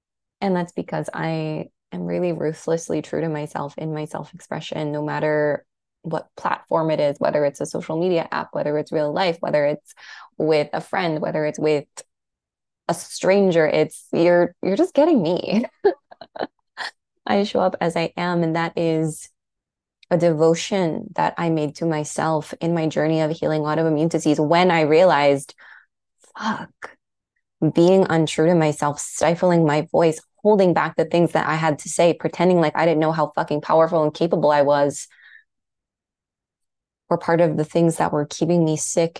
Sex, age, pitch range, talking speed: female, 20-39, 155-175 Hz, 170 wpm